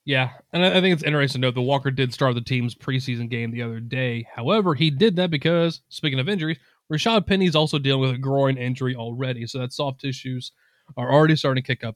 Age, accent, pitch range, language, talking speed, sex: 20-39, American, 125-155 Hz, English, 230 wpm, male